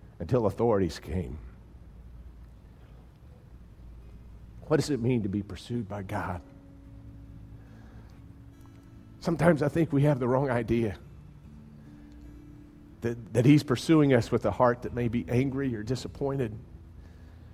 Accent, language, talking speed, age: American, English, 115 wpm, 40-59